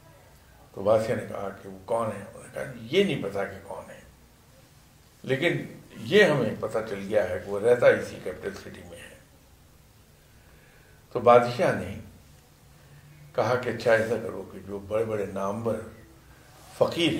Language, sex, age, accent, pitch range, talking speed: English, male, 60-79, Indian, 105-135 Hz, 155 wpm